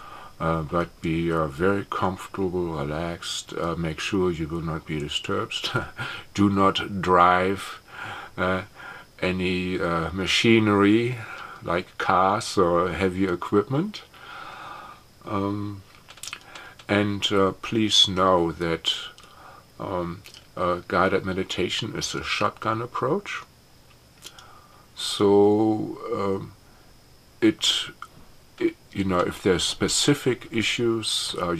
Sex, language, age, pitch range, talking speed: male, English, 50-69, 85-105 Hz, 95 wpm